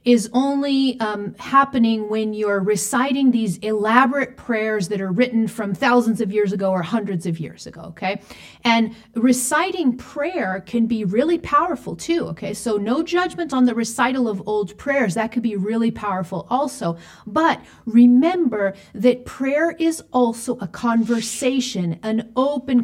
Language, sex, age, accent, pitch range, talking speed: English, female, 40-59, American, 180-240 Hz, 150 wpm